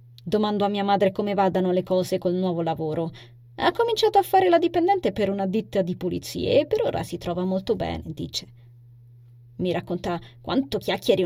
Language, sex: Italian, female